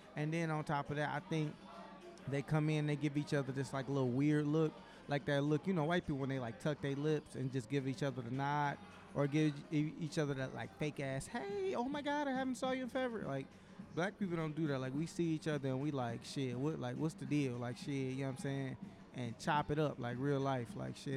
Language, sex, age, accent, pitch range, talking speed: English, male, 20-39, American, 135-155 Hz, 270 wpm